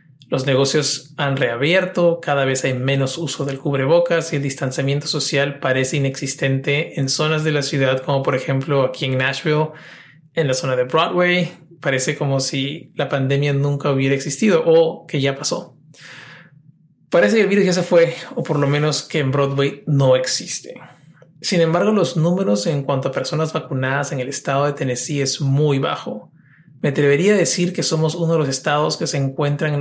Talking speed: 185 wpm